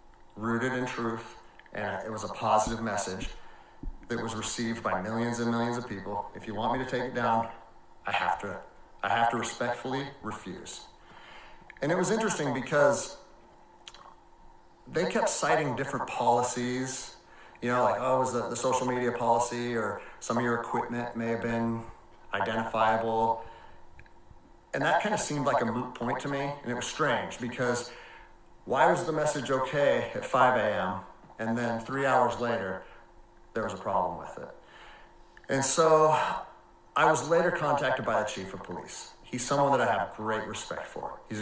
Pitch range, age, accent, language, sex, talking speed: 110-130 Hz, 30-49, American, English, male, 170 wpm